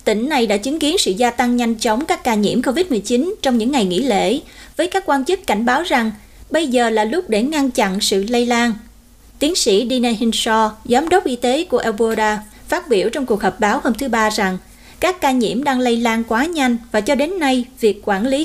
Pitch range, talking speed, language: 205-270 Hz, 230 wpm, Vietnamese